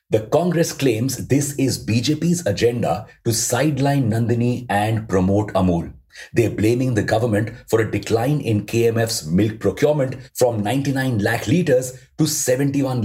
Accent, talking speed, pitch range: Indian, 140 wpm, 100-140 Hz